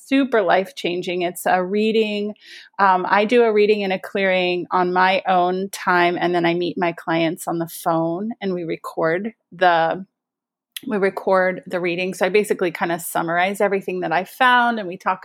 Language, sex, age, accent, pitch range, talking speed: English, female, 30-49, American, 175-210 Hz, 185 wpm